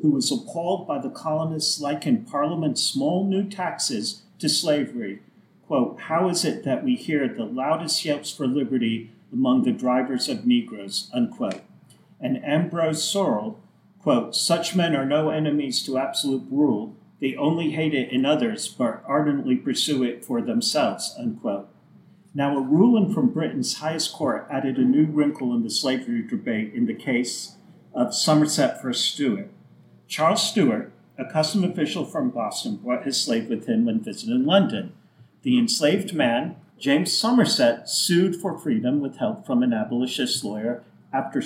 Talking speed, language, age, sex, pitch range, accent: 155 wpm, English, 50-69, male, 145-230 Hz, American